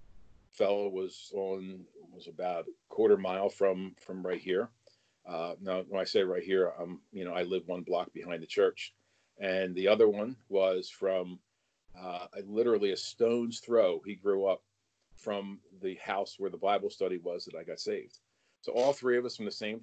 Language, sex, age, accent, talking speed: English, male, 40-59, American, 195 wpm